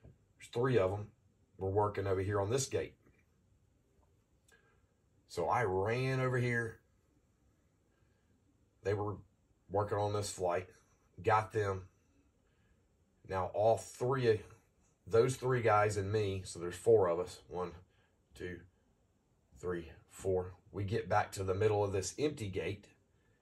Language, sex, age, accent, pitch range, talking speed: English, male, 40-59, American, 95-115 Hz, 130 wpm